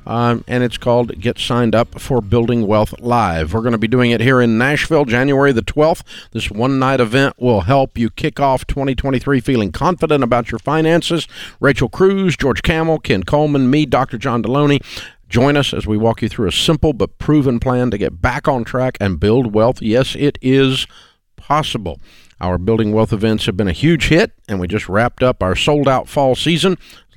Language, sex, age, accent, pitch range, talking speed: English, male, 50-69, American, 110-150 Hz, 200 wpm